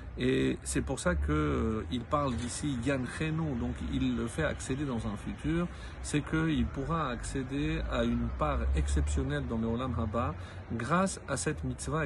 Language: French